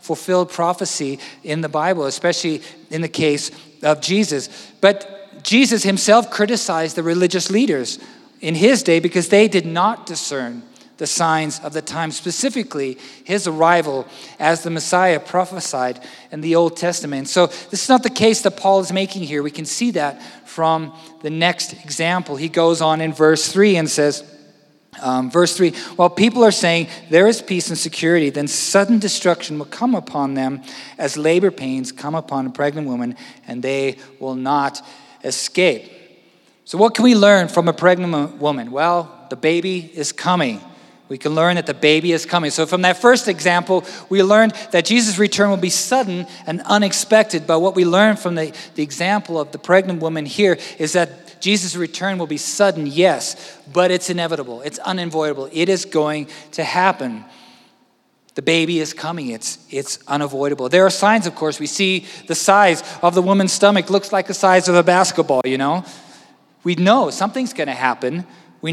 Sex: male